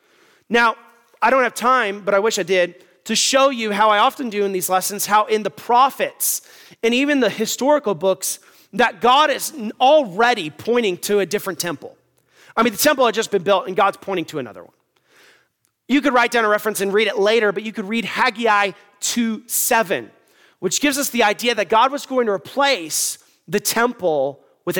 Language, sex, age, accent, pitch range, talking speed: English, male, 30-49, American, 170-235 Hz, 200 wpm